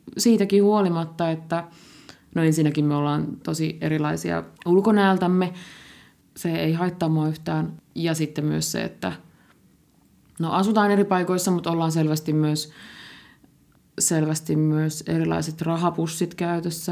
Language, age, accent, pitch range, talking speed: Finnish, 20-39, native, 155-185 Hz, 115 wpm